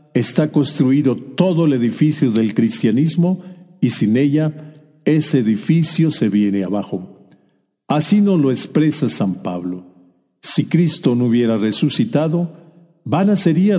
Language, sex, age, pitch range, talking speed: Spanish, male, 50-69, 110-155 Hz, 120 wpm